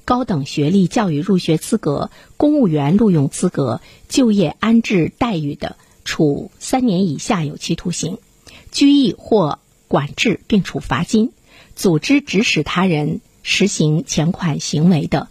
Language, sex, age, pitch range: Chinese, female, 50-69, 155-225 Hz